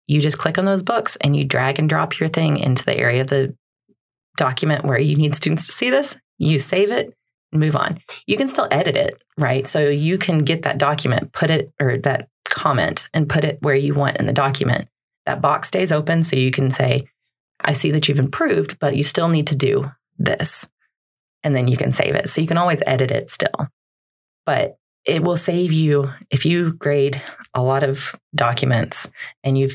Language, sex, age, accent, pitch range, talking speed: English, female, 30-49, American, 140-165 Hz, 210 wpm